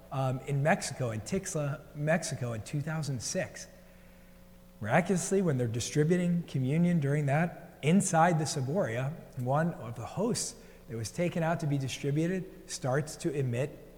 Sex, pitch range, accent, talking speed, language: male, 125-170 Hz, American, 135 wpm, English